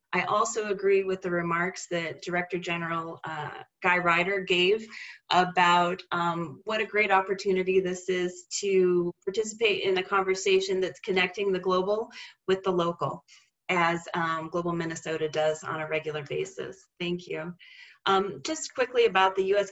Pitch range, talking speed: 175-200 Hz, 150 wpm